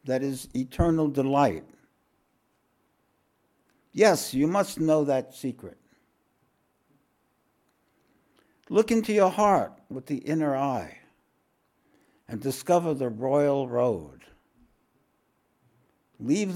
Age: 60-79